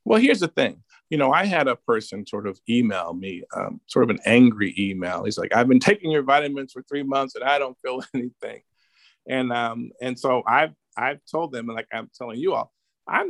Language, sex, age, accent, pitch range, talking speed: English, male, 50-69, American, 115-150 Hz, 225 wpm